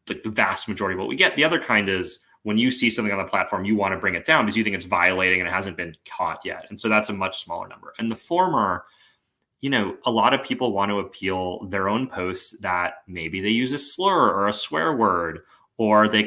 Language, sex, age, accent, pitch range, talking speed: English, male, 30-49, American, 95-115 Hz, 260 wpm